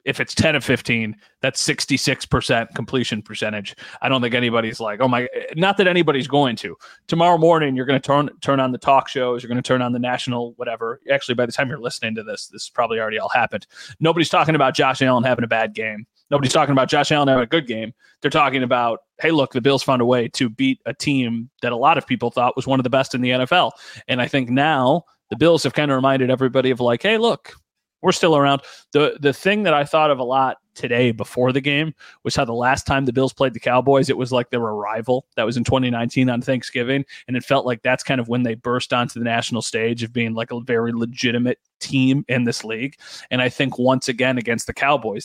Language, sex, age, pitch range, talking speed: English, male, 30-49, 120-140 Hz, 240 wpm